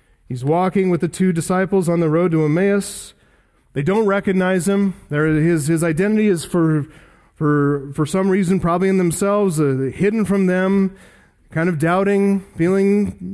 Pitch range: 145-200 Hz